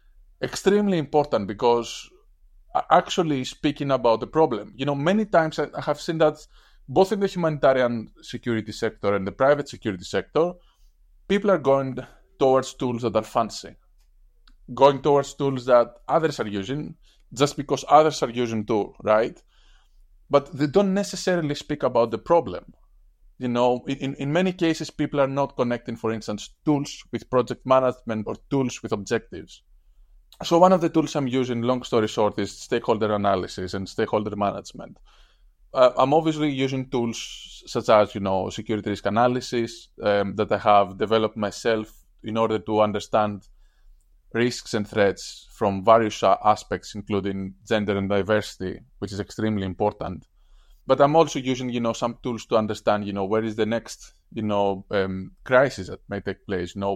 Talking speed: 165 wpm